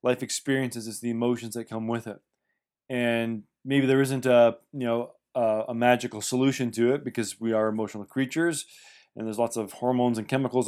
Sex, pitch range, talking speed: male, 115-135 Hz, 190 wpm